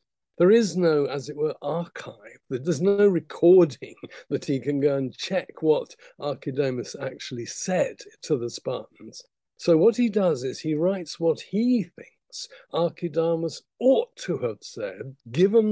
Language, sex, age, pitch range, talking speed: English, male, 50-69, 140-210 Hz, 150 wpm